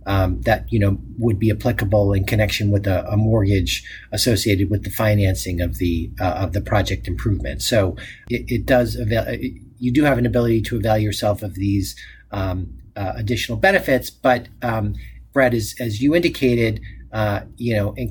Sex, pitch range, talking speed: male, 105-125 Hz, 180 wpm